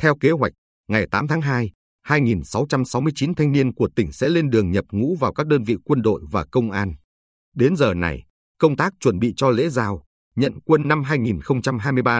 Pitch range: 90-140 Hz